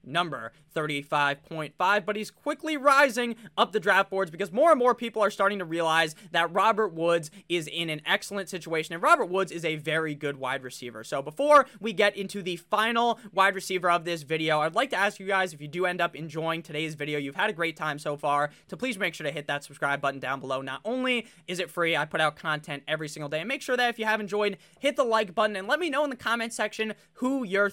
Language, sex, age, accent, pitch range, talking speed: English, male, 20-39, American, 155-215 Hz, 245 wpm